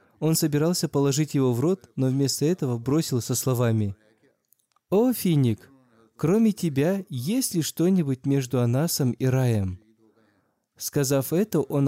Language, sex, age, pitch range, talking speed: Russian, male, 20-39, 115-150 Hz, 130 wpm